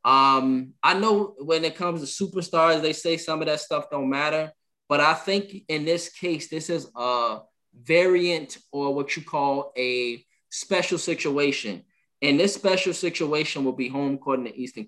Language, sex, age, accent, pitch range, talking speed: English, male, 20-39, American, 130-160 Hz, 180 wpm